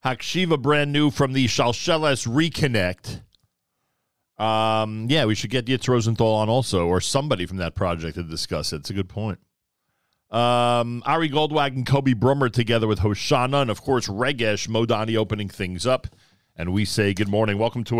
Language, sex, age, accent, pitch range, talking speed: English, male, 40-59, American, 105-140 Hz, 175 wpm